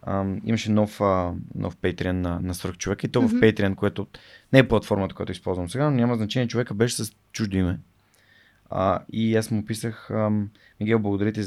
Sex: male